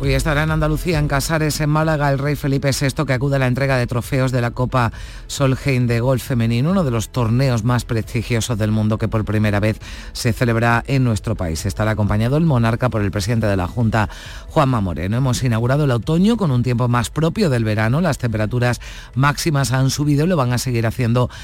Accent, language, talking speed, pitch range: Spanish, Spanish, 215 wpm, 115-150 Hz